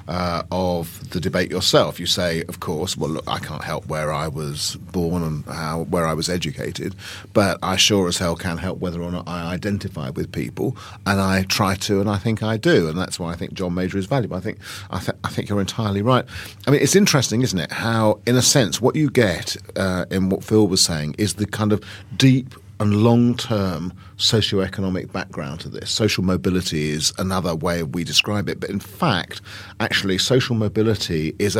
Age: 40-59